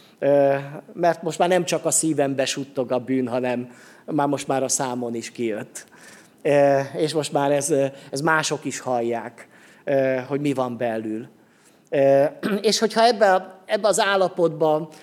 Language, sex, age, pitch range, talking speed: Hungarian, male, 30-49, 130-165 Hz, 145 wpm